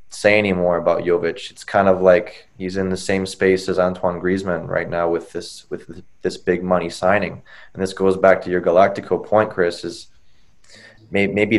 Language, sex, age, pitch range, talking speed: English, male, 20-39, 90-110 Hz, 185 wpm